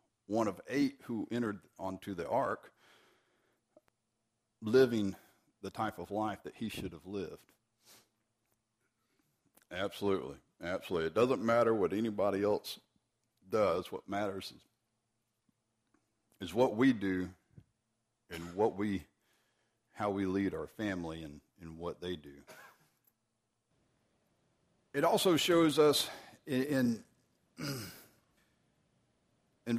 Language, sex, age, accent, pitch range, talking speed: English, male, 60-79, American, 95-125 Hz, 110 wpm